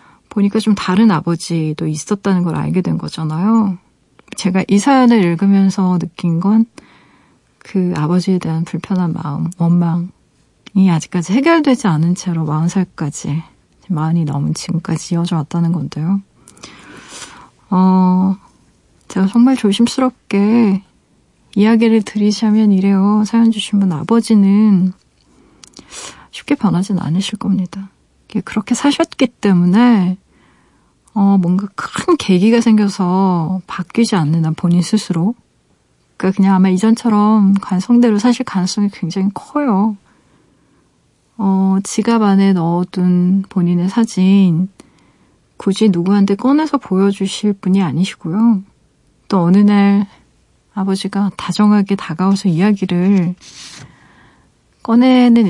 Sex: female